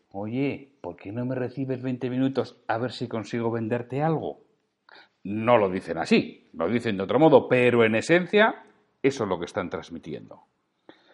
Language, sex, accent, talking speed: Spanish, male, Spanish, 170 wpm